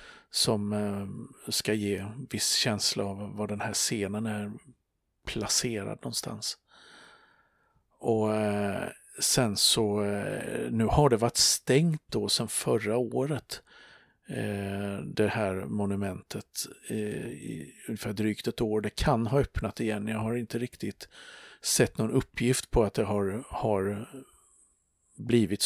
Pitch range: 100-115 Hz